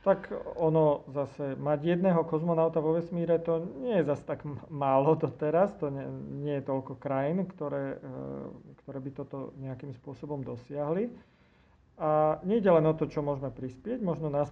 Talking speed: 165 wpm